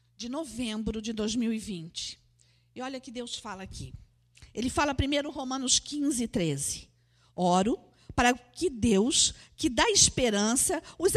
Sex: female